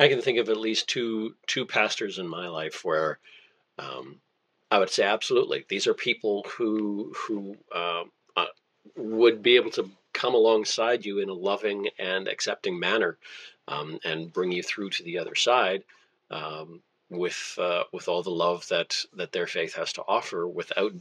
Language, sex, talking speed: English, male, 180 wpm